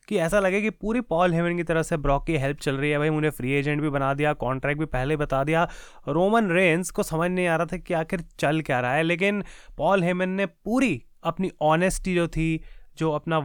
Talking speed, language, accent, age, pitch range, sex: 235 wpm, Hindi, native, 20-39, 150-185 Hz, male